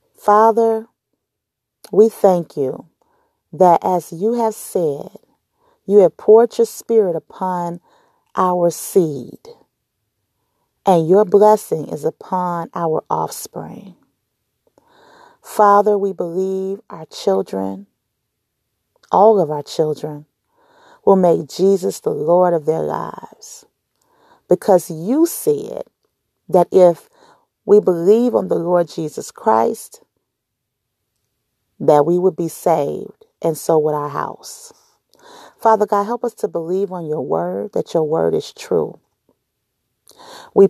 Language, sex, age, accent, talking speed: English, female, 40-59, American, 115 wpm